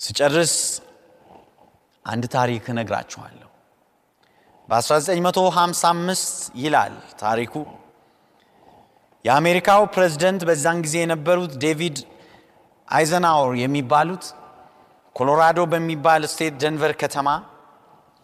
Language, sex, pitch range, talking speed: Amharic, male, 130-185 Hz, 65 wpm